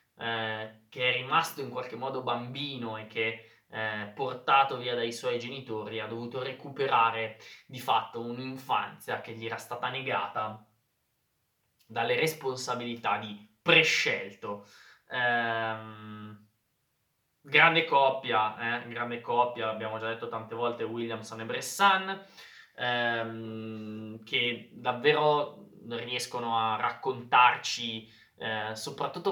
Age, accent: 20-39, native